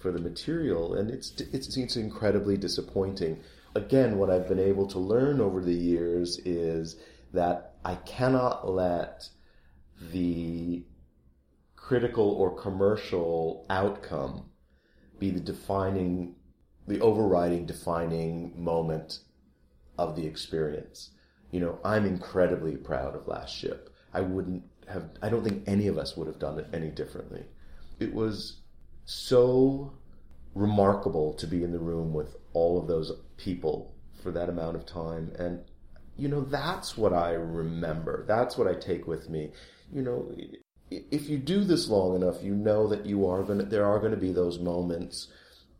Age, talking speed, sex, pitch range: 40-59, 150 wpm, male, 75-95 Hz